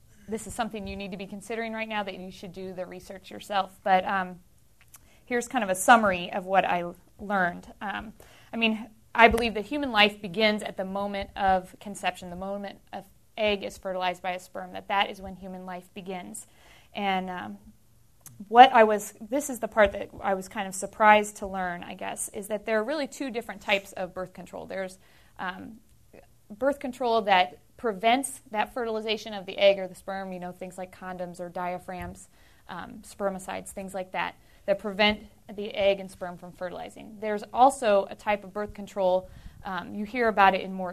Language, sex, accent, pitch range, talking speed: English, female, American, 185-220 Hz, 200 wpm